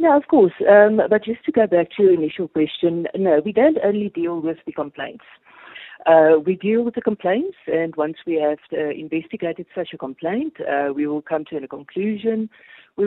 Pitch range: 150-205 Hz